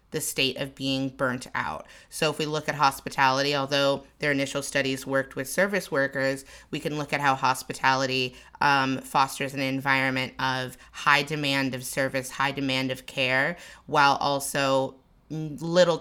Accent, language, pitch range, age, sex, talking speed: American, English, 140-155 Hz, 30-49, female, 155 wpm